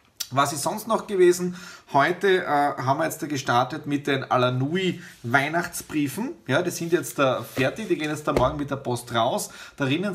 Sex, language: male, German